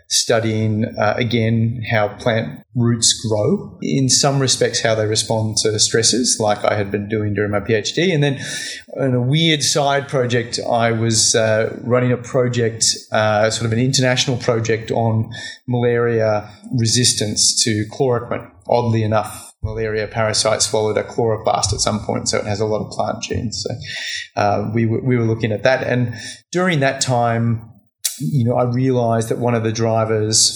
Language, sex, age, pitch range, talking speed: English, male, 30-49, 110-125 Hz, 175 wpm